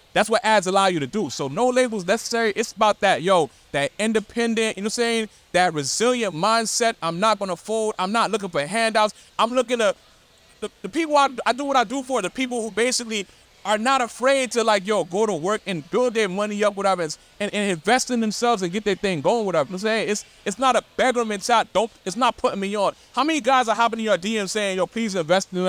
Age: 30-49